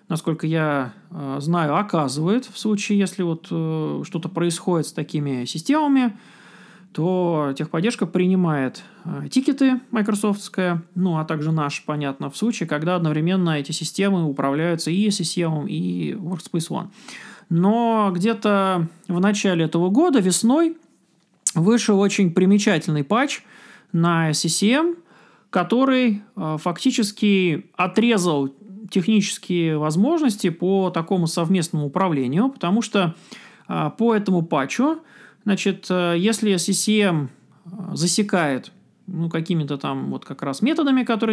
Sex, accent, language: male, native, Russian